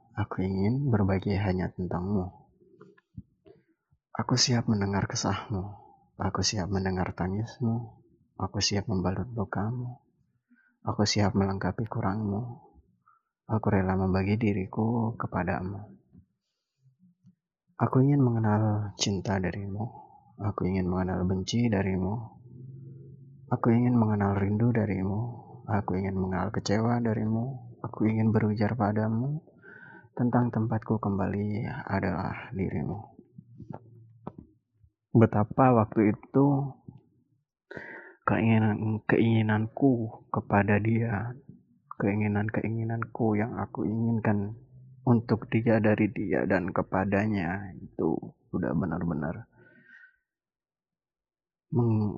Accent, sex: native, male